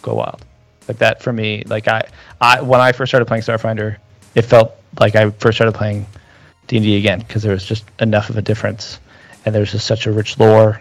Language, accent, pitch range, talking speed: English, American, 105-115 Hz, 220 wpm